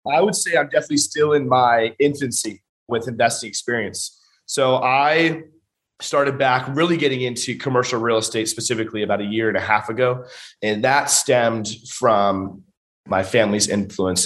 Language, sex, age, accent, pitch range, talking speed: English, male, 30-49, American, 100-130 Hz, 155 wpm